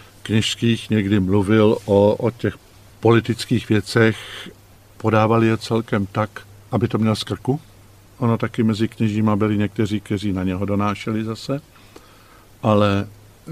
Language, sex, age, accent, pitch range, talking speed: Czech, male, 50-69, native, 105-115 Hz, 125 wpm